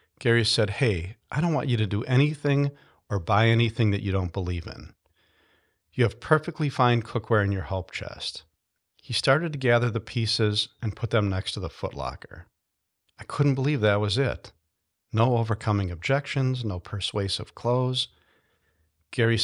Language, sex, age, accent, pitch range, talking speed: English, male, 50-69, American, 95-120 Hz, 165 wpm